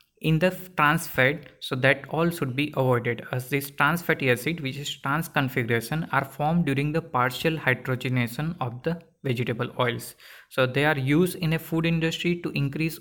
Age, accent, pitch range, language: 20-39, native, 130-160 Hz, Gujarati